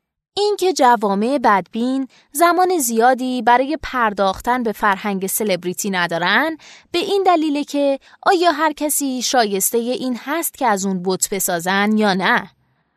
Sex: female